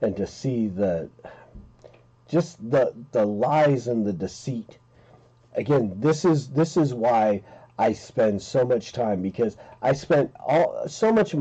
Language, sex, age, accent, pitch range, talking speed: English, male, 40-59, American, 120-160 Hz, 155 wpm